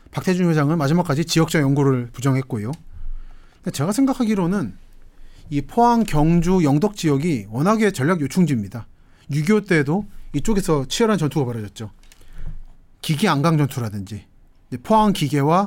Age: 30-49